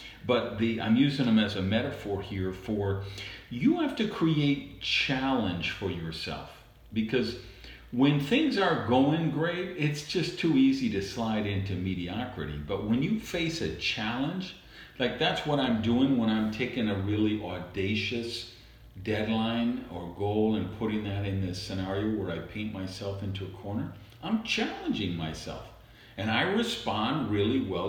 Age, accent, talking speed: 50-69, American, 155 wpm